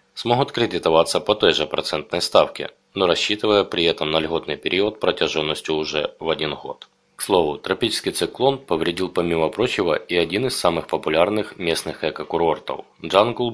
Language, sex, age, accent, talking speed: Russian, male, 20-39, native, 150 wpm